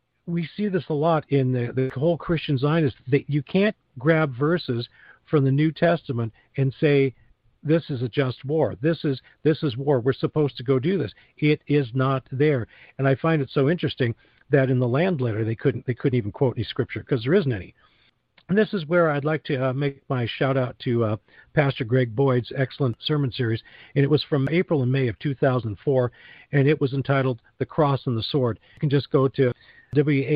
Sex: male